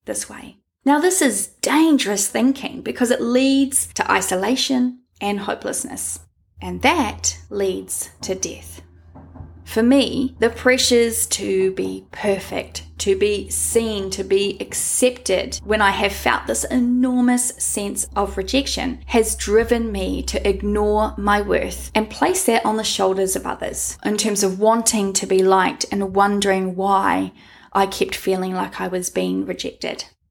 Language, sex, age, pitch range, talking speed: English, female, 10-29, 195-250 Hz, 145 wpm